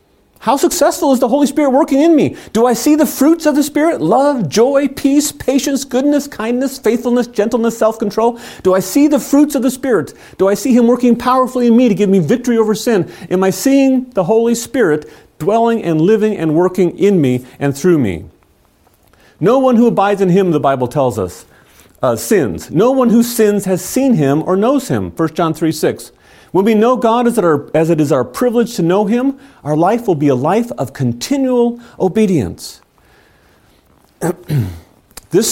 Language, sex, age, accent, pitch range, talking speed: English, male, 40-59, American, 160-245 Hz, 195 wpm